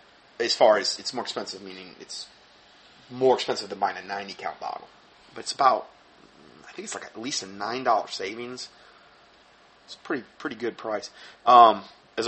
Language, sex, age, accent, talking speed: English, male, 30-49, American, 170 wpm